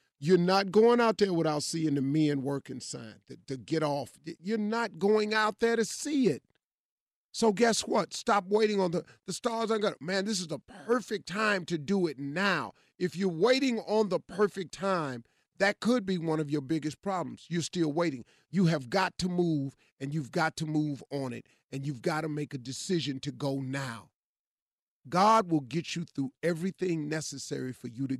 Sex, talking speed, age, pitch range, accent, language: male, 195 wpm, 40-59, 150-215 Hz, American, English